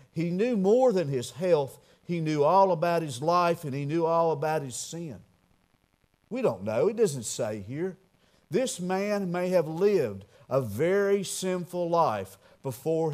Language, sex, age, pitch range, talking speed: English, male, 50-69, 135-200 Hz, 165 wpm